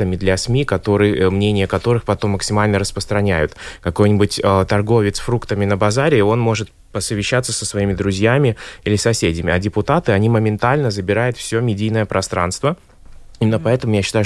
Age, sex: 20-39, male